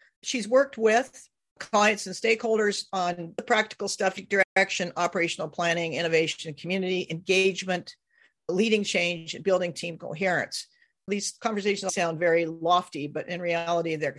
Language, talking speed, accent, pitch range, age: English, 130 wpm, American, 165-200 Hz, 50-69